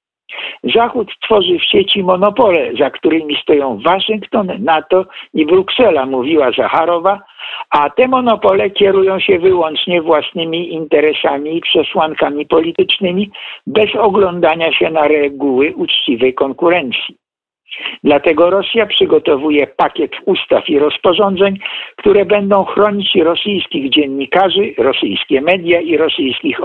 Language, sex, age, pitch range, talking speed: Polish, male, 60-79, 165-230 Hz, 110 wpm